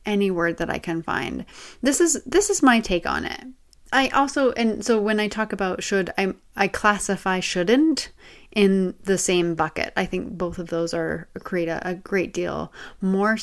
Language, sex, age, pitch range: English, female, 30-49, 180-235 Hz